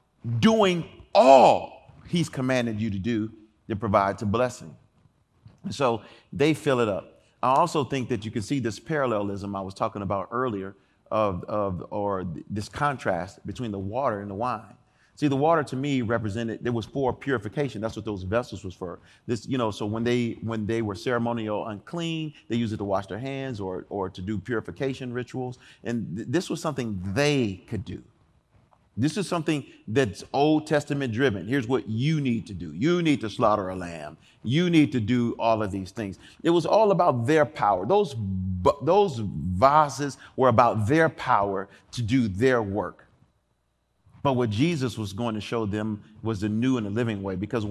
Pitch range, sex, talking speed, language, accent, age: 105-130 Hz, male, 185 wpm, English, American, 40-59